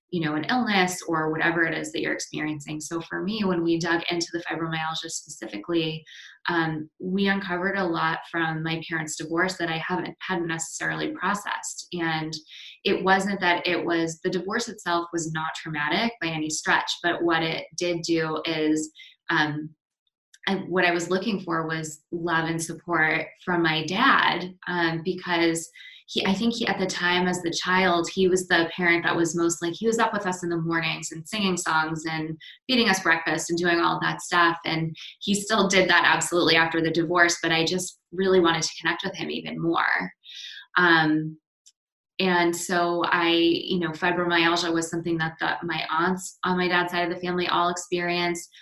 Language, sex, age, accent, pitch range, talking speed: English, female, 20-39, American, 165-180 Hz, 185 wpm